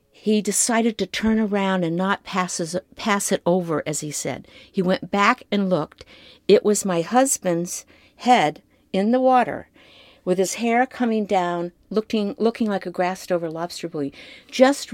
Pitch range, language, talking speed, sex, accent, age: 180-240 Hz, English, 160 wpm, female, American, 50-69